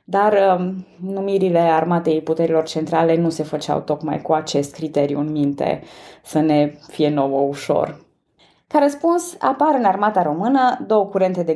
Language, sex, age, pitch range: Romanian, female, 20-39, 155-210 Hz